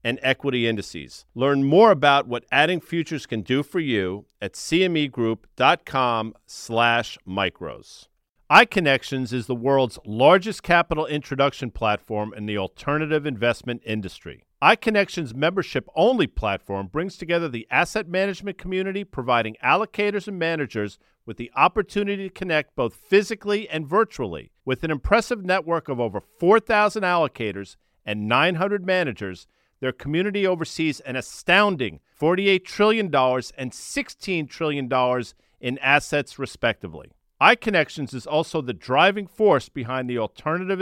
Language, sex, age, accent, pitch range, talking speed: English, male, 50-69, American, 125-185 Hz, 125 wpm